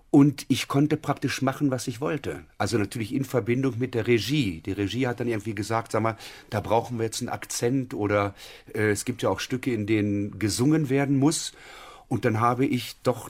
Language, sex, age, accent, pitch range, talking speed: German, male, 40-59, German, 105-130 Hz, 210 wpm